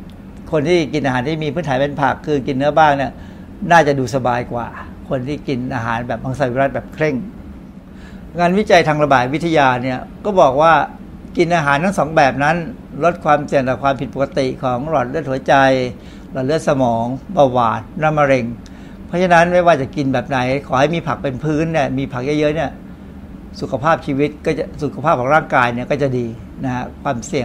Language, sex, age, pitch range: Thai, male, 60-79, 130-160 Hz